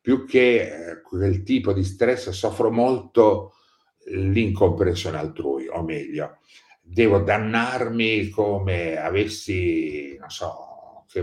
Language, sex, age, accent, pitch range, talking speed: Italian, male, 50-69, native, 90-120 Hz, 100 wpm